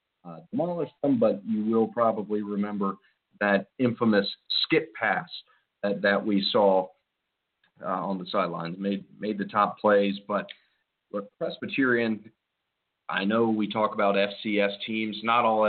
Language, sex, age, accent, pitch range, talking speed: English, male, 40-59, American, 100-110 Hz, 140 wpm